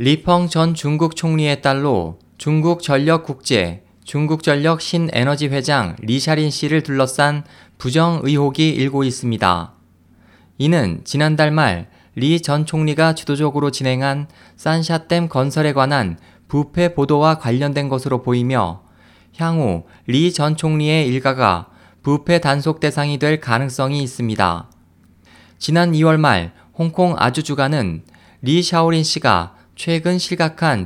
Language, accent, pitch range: Korean, native, 110-160 Hz